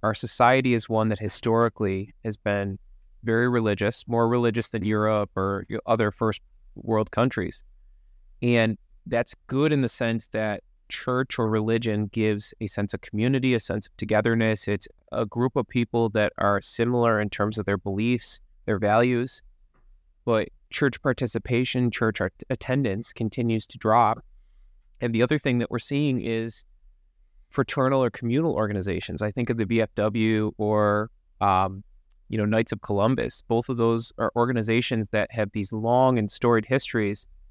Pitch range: 105-120 Hz